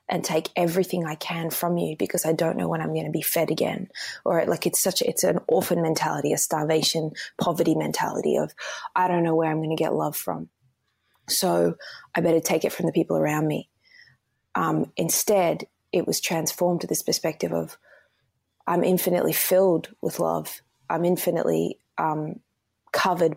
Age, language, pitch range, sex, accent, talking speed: 20-39, English, 155-185 Hz, female, Australian, 175 wpm